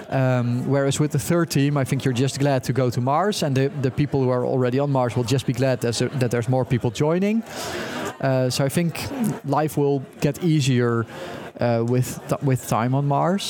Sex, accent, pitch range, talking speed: male, Dutch, 125-150 Hz, 220 wpm